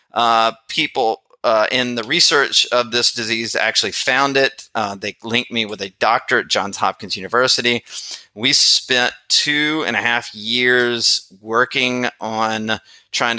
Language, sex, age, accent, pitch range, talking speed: English, male, 30-49, American, 110-130 Hz, 150 wpm